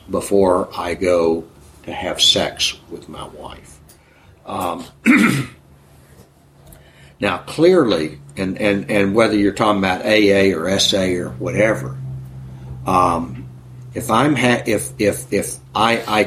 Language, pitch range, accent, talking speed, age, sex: English, 80-105 Hz, American, 120 wpm, 60-79, male